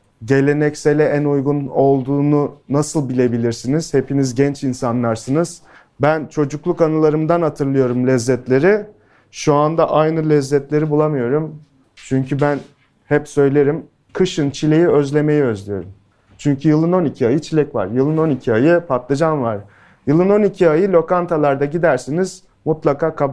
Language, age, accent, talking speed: Turkish, 30-49, native, 115 wpm